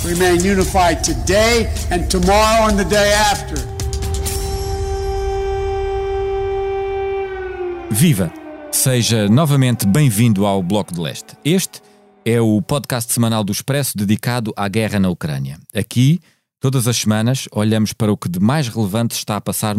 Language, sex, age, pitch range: Portuguese, male, 50-69, 110-150 Hz